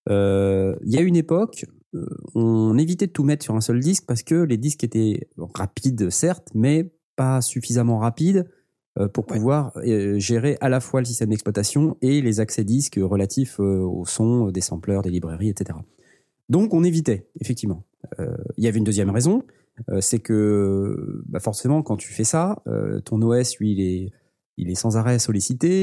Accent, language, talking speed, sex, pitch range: French, French, 195 wpm, male, 100-130 Hz